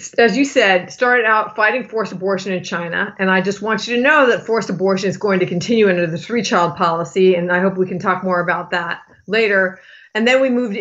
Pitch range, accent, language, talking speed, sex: 185-215 Hz, American, English, 240 wpm, female